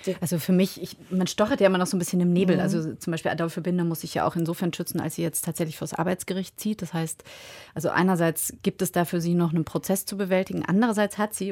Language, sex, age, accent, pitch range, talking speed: German, female, 30-49, German, 170-195 Hz, 255 wpm